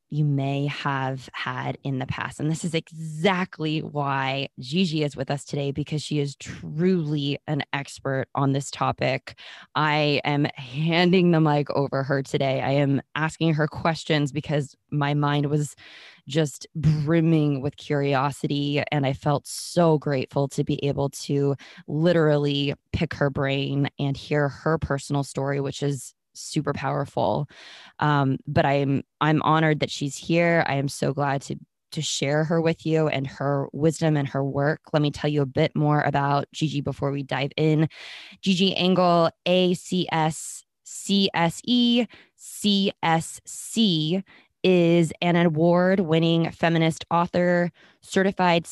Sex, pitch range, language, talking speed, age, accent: female, 140-165 Hz, English, 155 wpm, 20-39, American